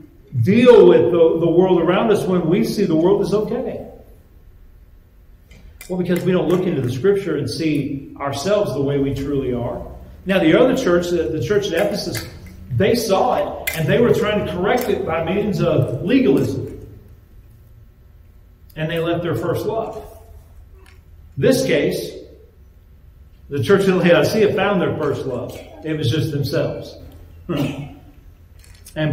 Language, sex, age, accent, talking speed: English, male, 40-59, American, 150 wpm